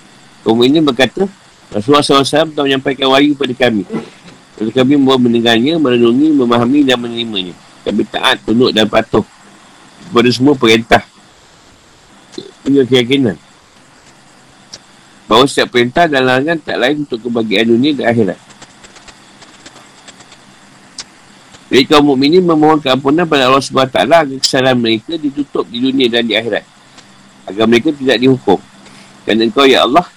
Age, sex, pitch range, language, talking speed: 50-69, male, 110-135 Hz, Malay, 135 wpm